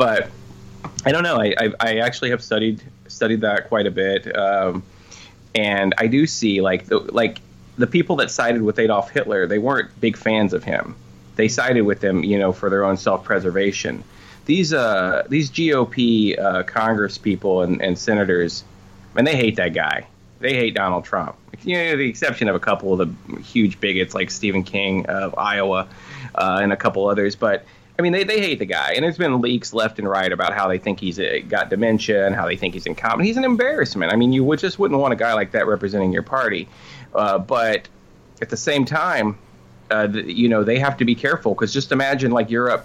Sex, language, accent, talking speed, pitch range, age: male, English, American, 215 wpm, 95-120 Hz, 20-39